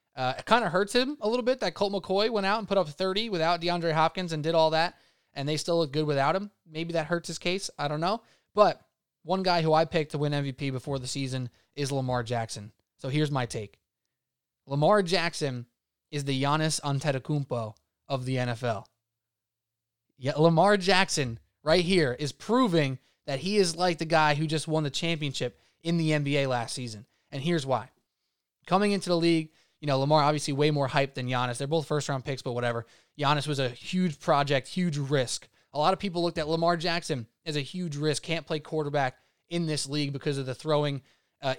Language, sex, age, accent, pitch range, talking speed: English, male, 20-39, American, 130-170 Hz, 205 wpm